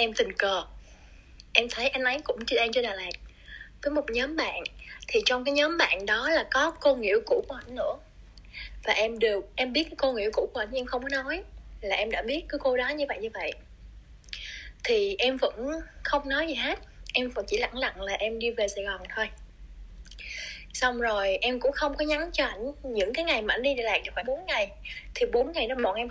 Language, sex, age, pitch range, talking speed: Vietnamese, female, 20-39, 225-310 Hz, 235 wpm